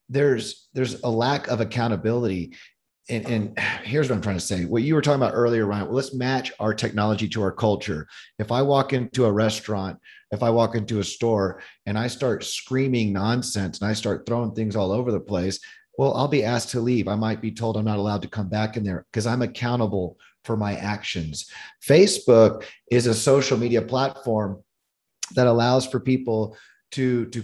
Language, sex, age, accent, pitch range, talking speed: English, male, 30-49, American, 105-130 Hz, 195 wpm